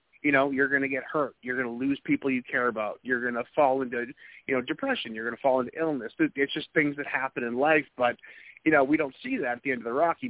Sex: male